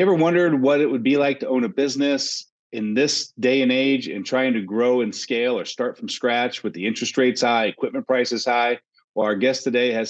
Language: English